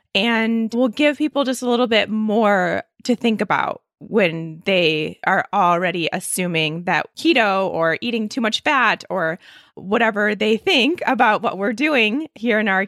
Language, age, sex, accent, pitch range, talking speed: English, 20-39, female, American, 185-230 Hz, 165 wpm